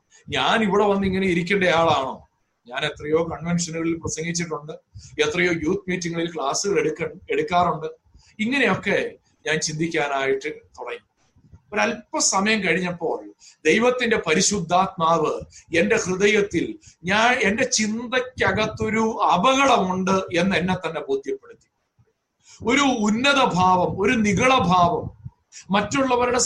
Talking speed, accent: 85 wpm, native